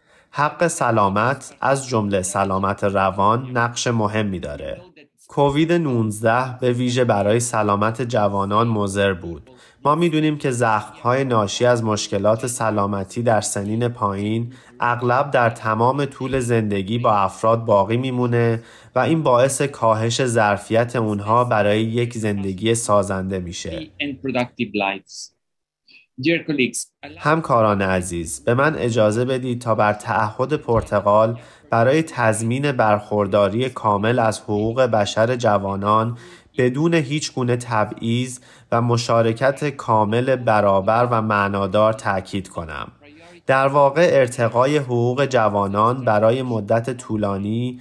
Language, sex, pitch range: Persian, male, 105-125 Hz